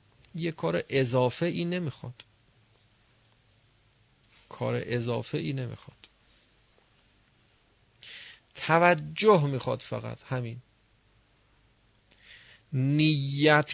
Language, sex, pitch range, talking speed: Persian, male, 110-150 Hz, 60 wpm